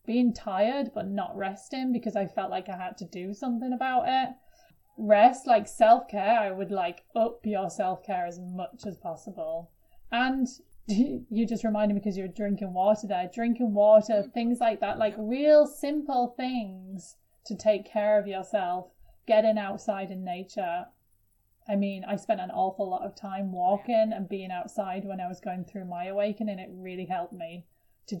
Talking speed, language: 175 wpm, English